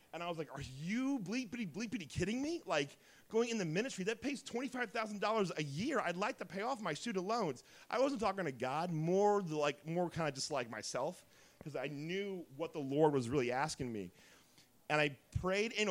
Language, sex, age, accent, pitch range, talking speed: English, male, 30-49, American, 135-180 Hz, 210 wpm